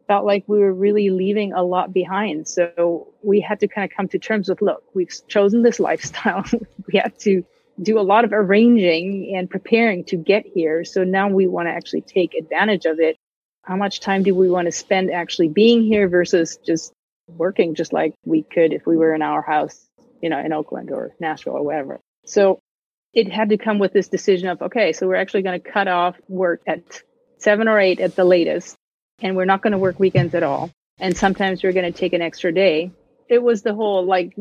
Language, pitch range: English, 175-205 Hz